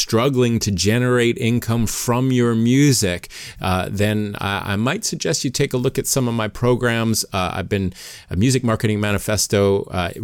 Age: 30-49